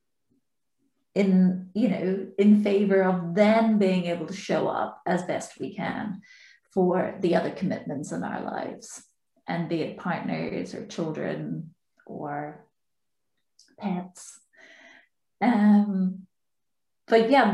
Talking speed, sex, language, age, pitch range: 115 wpm, female, English, 30-49, 185-215 Hz